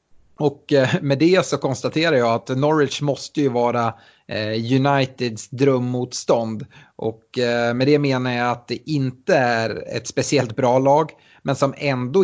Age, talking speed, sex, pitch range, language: 30-49, 140 wpm, male, 115-135 Hz, Swedish